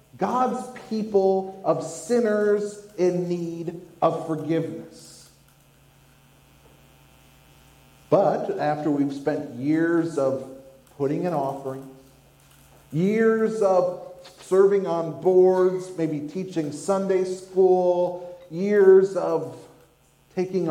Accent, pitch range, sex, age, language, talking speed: American, 150-205 Hz, male, 40-59, English, 85 wpm